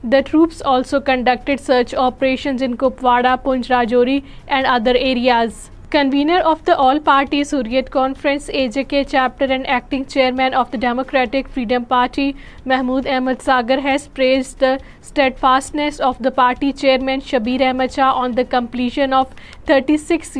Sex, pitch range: female, 255-275 Hz